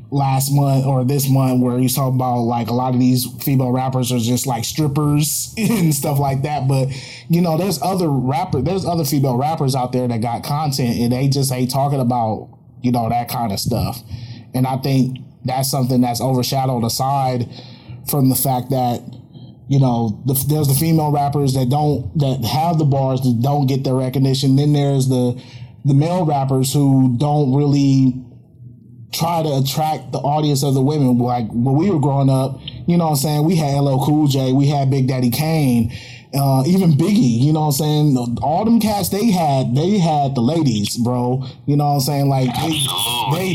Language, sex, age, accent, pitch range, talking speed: English, male, 20-39, American, 125-155 Hz, 200 wpm